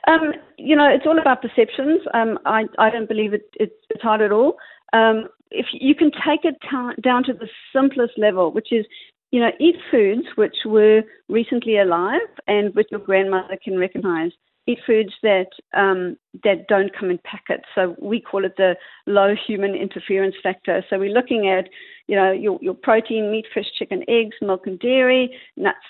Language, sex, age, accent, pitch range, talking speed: English, female, 50-69, Australian, 200-255 Hz, 180 wpm